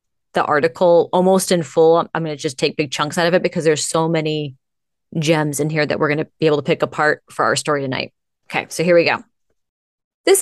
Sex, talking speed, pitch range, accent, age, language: female, 235 wpm, 155-210 Hz, American, 20-39, English